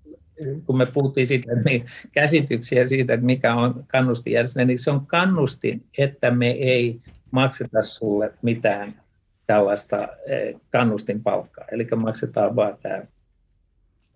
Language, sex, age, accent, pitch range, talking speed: Finnish, male, 60-79, native, 110-135 Hz, 130 wpm